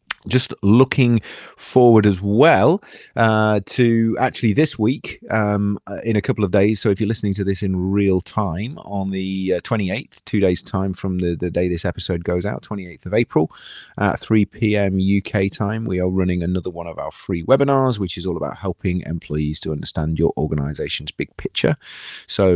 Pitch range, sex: 80-105 Hz, male